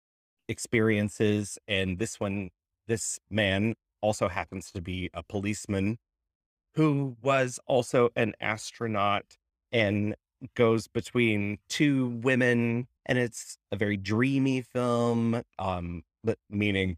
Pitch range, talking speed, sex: 90-110 Hz, 110 wpm, male